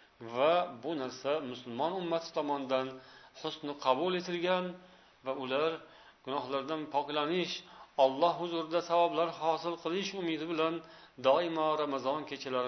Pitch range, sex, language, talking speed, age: 135-170 Hz, male, Russian, 115 wpm, 40-59